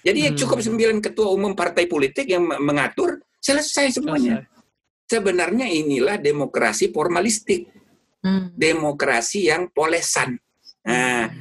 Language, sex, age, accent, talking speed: Indonesian, male, 60-79, native, 100 wpm